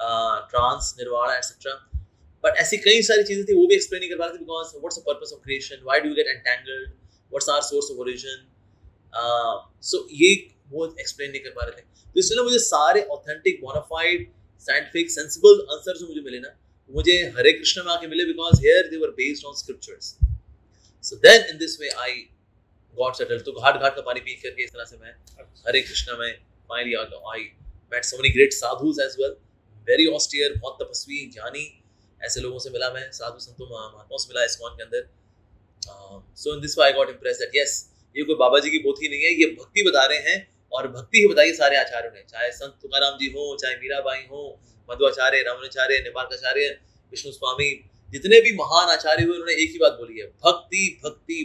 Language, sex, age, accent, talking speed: Hindi, male, 30-49, native, 95 wpm